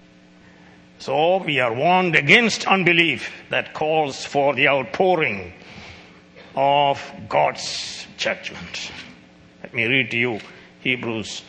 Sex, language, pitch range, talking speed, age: male, English, 135-165 Hz, 105 wpm, 60-79